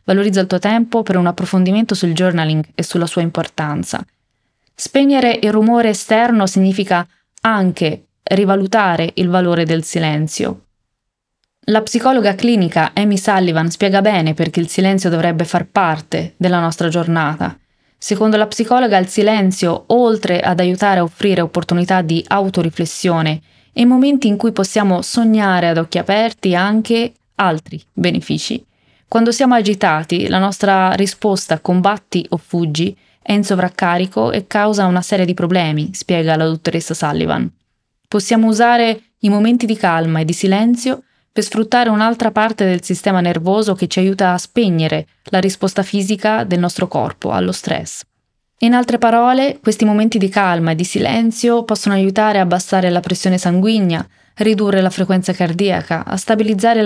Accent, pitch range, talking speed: native, 175-215 Hz, 145 wpm